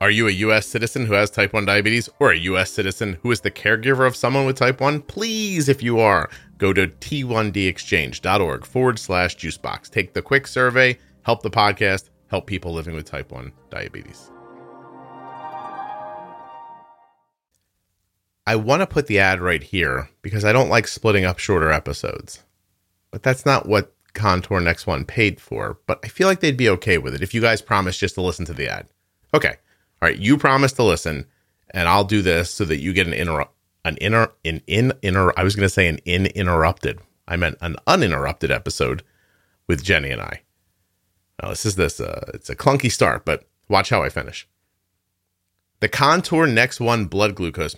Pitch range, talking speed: 90-120 Hz, 185 wpm